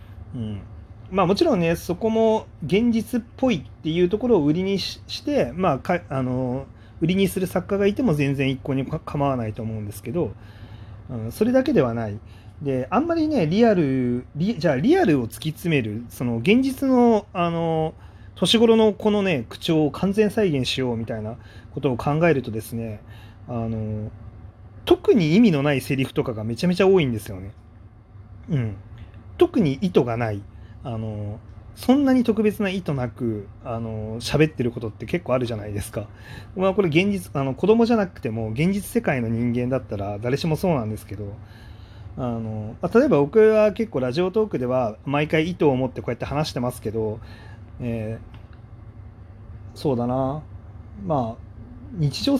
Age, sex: 30-49, male